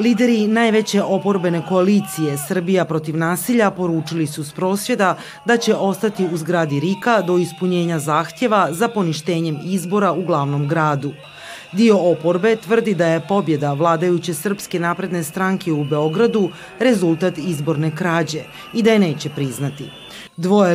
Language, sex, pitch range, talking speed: Croatian, female, 165-205 Hz, 135 wpm